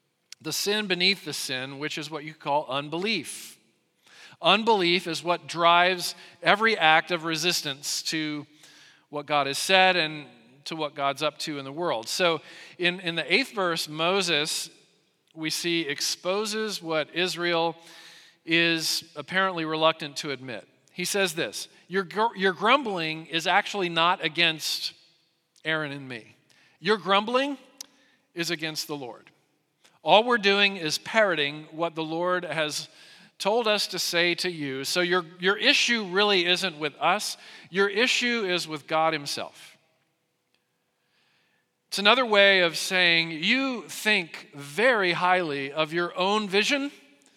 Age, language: 40-59, English